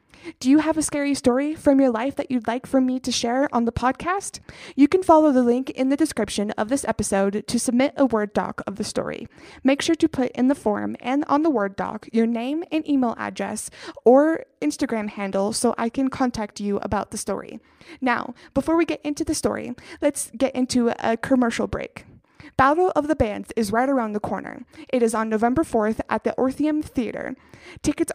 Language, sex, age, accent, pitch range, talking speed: English, female, 20-39, American, 230-285 Hz, 210 wpm